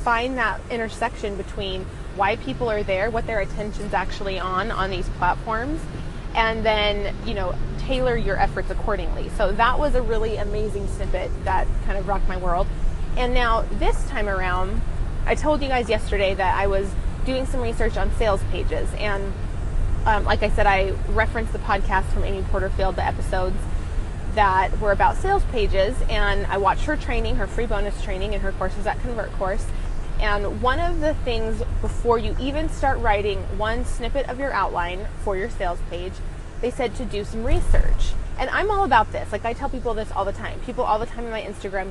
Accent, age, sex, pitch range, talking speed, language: American, 20-39, female, 190-245 Hz, 195 wpm, English